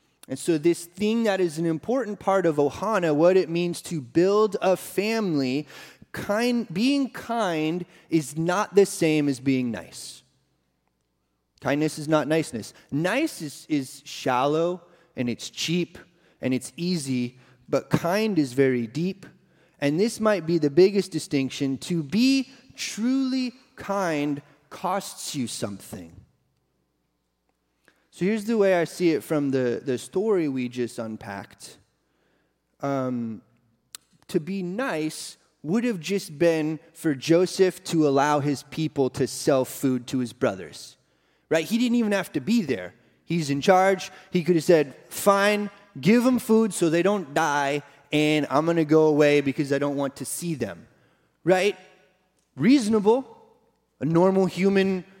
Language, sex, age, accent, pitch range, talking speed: English, male, 30-49, American, 140-190 Hz, 150 wpm